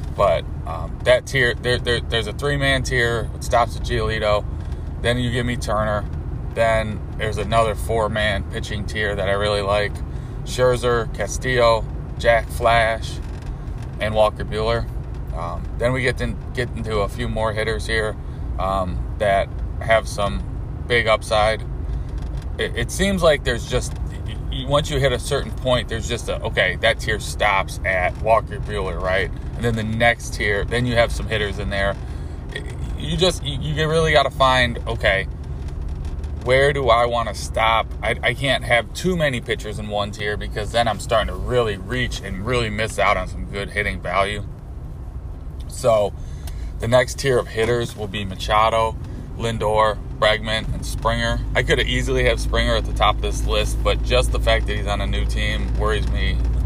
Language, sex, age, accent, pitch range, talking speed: English, male, 20-39, American, 95-120 Hz, 175 wpm